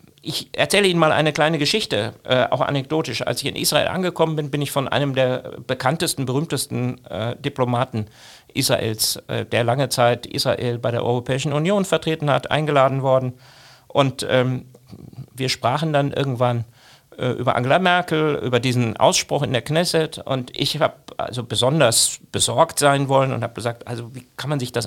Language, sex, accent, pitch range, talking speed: German, male, German, 125-160 Hz, 160 wpm